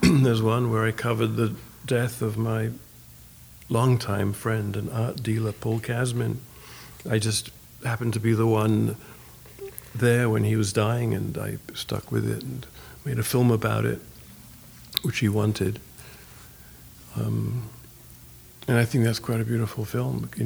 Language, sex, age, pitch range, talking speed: English, male, 50-69, 105-120 Hz, 160 wpm